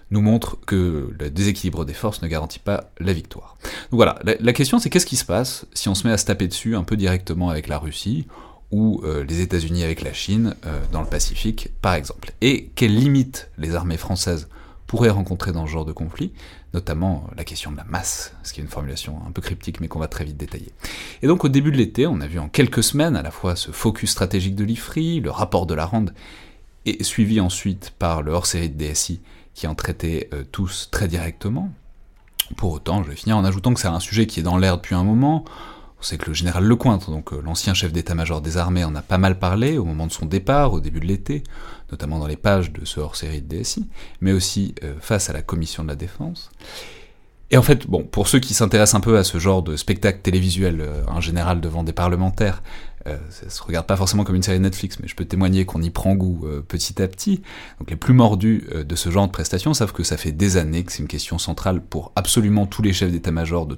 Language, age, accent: French, 30-49, French